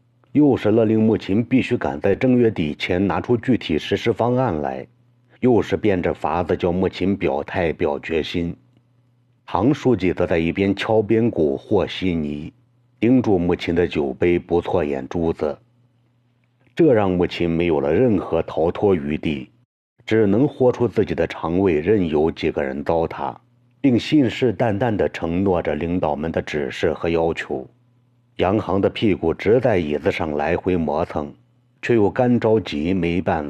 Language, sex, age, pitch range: Chinese, male, 50-69, 85-120 Hz